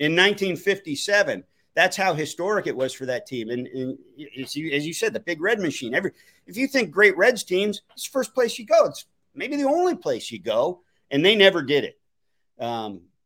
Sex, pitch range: male, 125-190 Hz